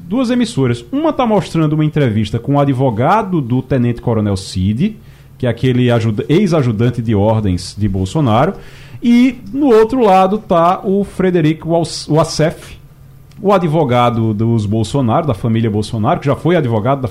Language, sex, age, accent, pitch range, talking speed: Portuguese, male, 40-59, Brazilian, 130-205 Hz, 145 wpm